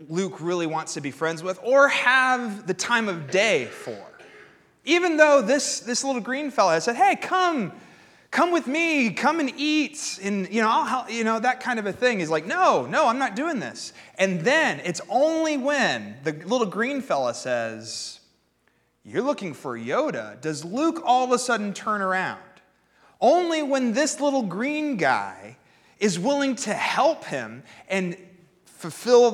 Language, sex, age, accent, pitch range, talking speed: English, male, 30-49, American, 155-250 Hz, 175 wpm